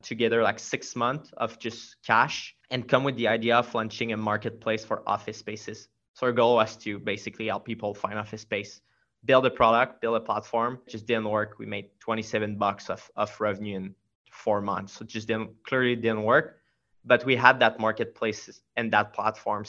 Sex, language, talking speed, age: male, English, 190 wpm, 20-39